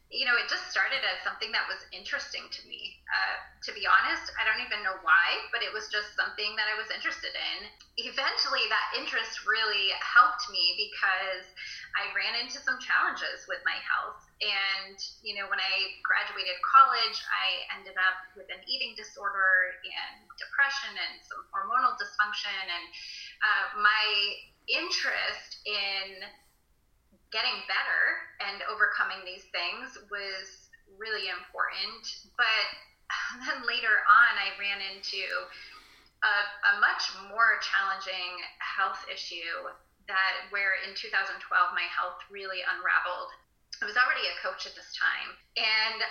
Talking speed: 145 wpm